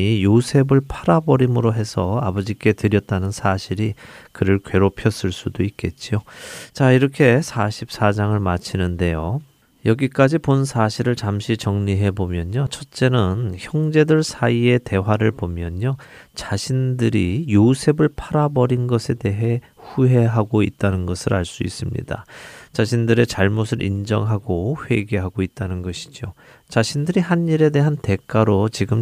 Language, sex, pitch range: Korean, male, 100-130 Hz